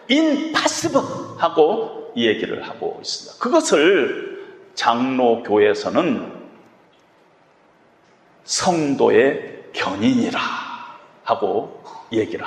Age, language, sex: 40-59, Korean, male